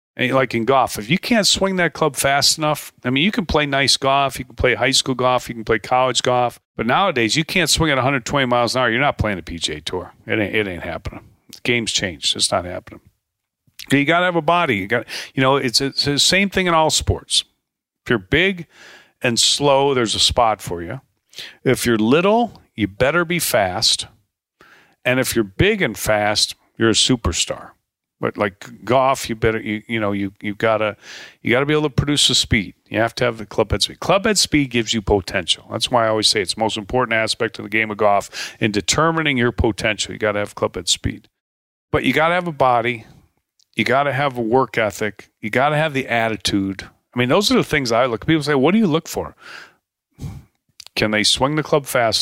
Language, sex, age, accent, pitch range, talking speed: English, male, 40-59, American, 110-140 Hz, 225 wpm